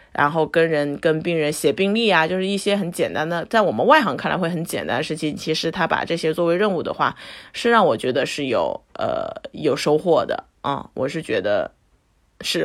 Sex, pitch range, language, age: female, 150-200 Hz, Chinese, 20-39